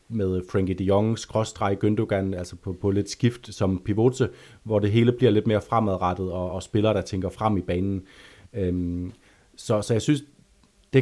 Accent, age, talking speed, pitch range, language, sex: native, 30-49, 185 wpm, 95-115 Hz, Danish, male